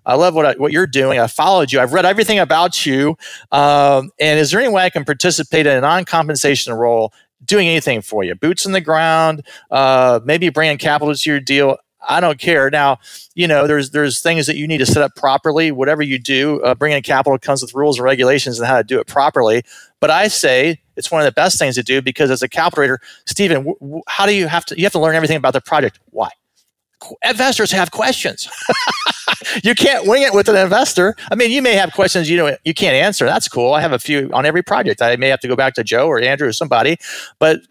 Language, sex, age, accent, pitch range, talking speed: English, male, 40-59, American, 135-175 Hz, 240 wpm